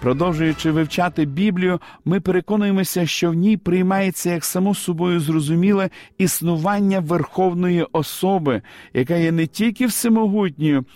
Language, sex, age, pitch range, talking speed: Ukrainian, male, 50-69, 155-195 Hz, 115 wpm